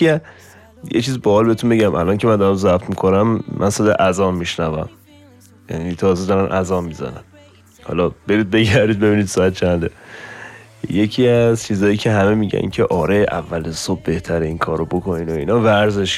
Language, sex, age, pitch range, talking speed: Persian, male, 20-39, 95-110 Hz, 165 wpm